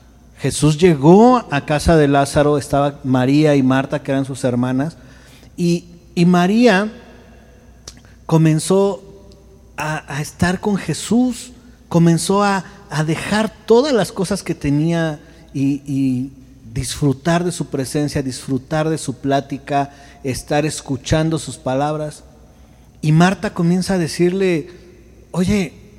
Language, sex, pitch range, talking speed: Spanish, male, 130-170 Hz, 120 wpm